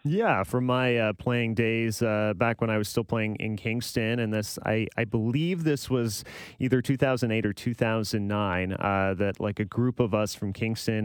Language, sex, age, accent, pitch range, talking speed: English, male, 30-49, American, 105-130 Hz, 190 wpm